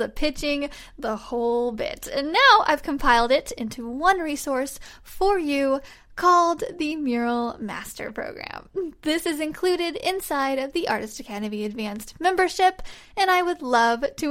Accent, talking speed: American, 145 wpm